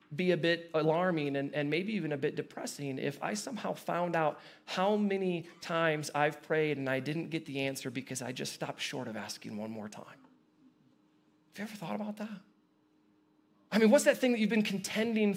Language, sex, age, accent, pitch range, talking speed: English, male, 30-49, American, 155-205 Hz, 205 wpm